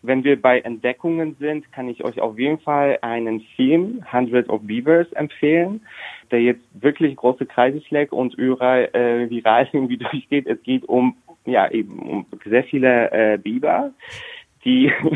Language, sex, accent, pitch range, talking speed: German, male, German, 110-135 Hz, 155 wpm